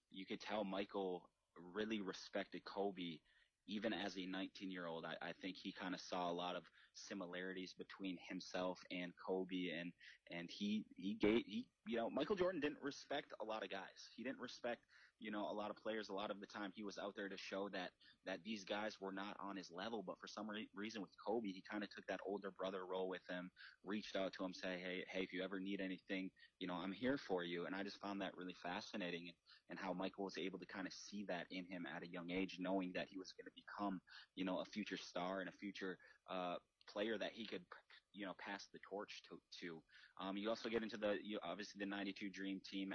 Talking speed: 230 wpm